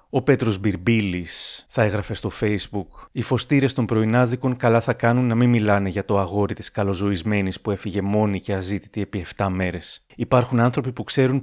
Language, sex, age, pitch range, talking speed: Greek, male, 30-49, 100-125 Hz, 180 wpm